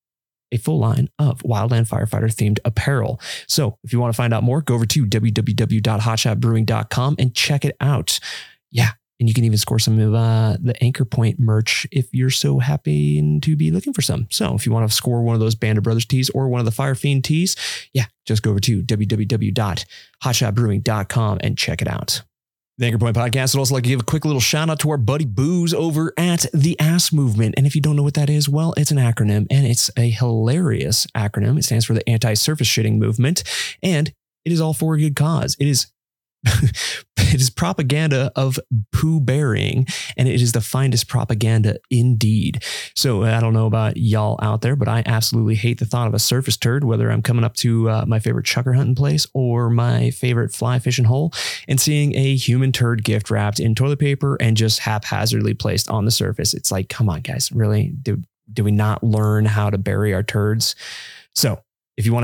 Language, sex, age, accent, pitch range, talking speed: English, male, 30-49, American, 110-135 Hz, 210 wpm